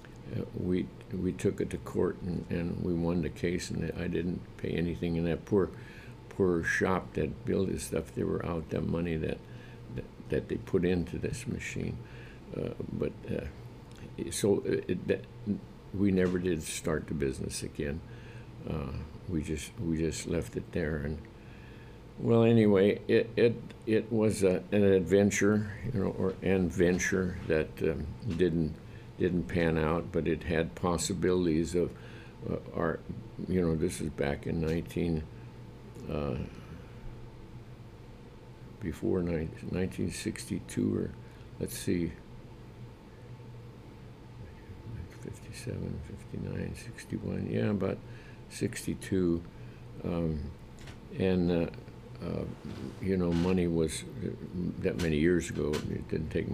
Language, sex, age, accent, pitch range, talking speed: English, male, 60-79, American, 85-115 Hz, 135 wpm